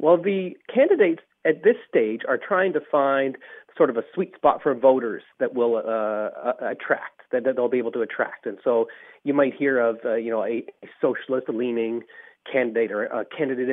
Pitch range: 115-150 Hz